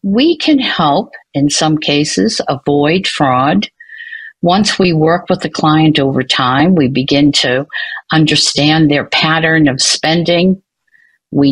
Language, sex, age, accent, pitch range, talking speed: English, female, 50-69, American, 145-225 Hz, 130 wpm